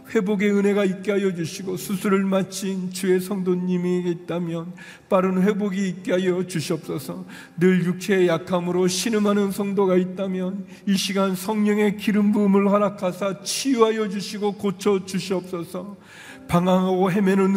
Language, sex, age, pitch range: Korean, male, 40-59, 180-205 Hz